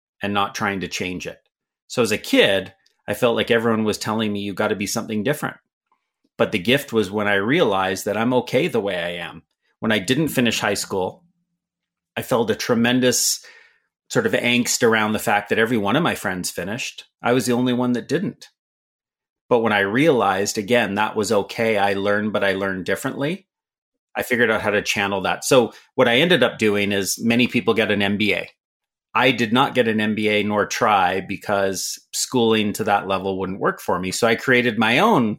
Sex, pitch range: male, 100-115 Hz